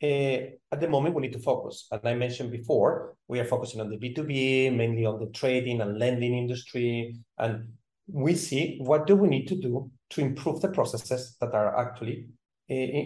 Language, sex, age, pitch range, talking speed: English, male, 40-59, 120-160 Hz, 195 wpm